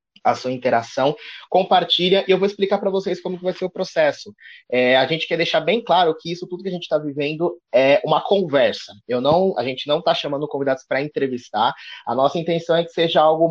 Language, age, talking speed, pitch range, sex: Portuguese, 20-39, 210 wpm, 130-170 Hz, male